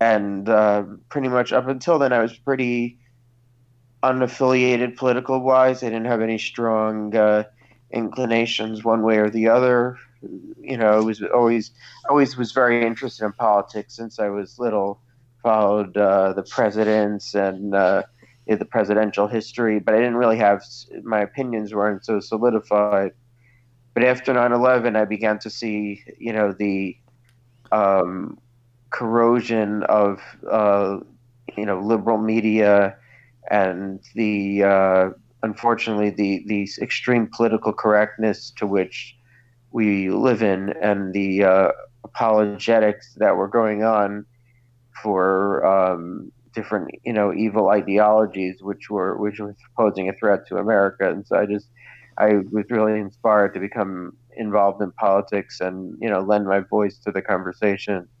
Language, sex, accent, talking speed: English, male, American, 140 wpm